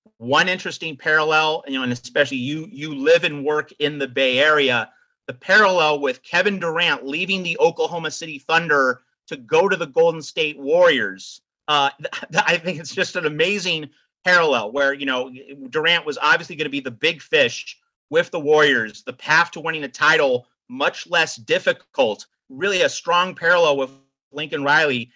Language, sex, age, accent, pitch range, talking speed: English, male, 40-59, American, 140-190 Hz, 175 wpm